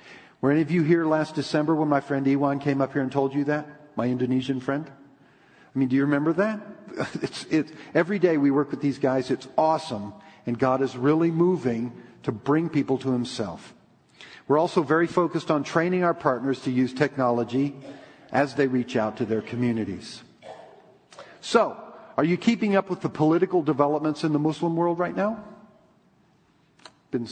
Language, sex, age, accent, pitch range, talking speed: English, male, 50-69, American, 130-160 Hz, 180 wpm